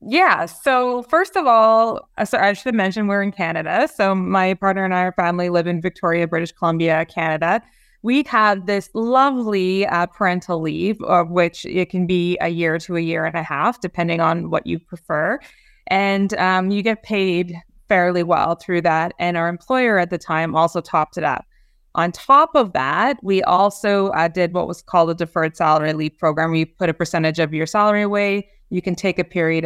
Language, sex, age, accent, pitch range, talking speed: English, female, 20-39, American, 170-215 Hz, 200 wpm